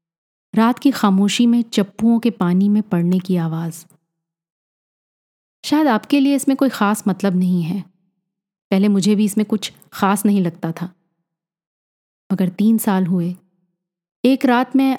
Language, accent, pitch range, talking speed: Hindi, native, 180-215 Hz, 145 wpm